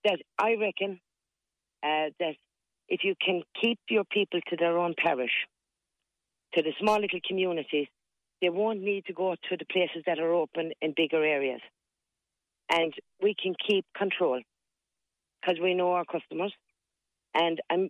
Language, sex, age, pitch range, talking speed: English, female, 50-69, 160-185 Hz, 155 wpm